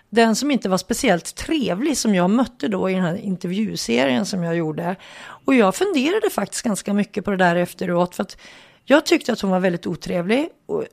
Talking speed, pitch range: 205 wpm, 185-240 Hz